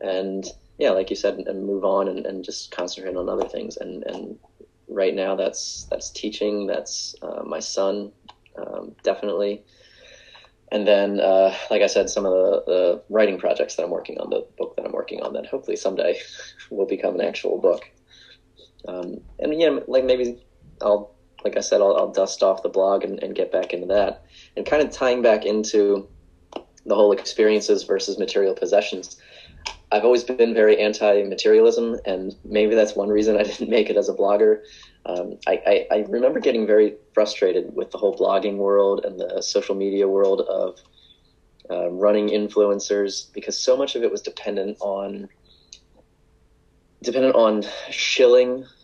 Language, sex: English, male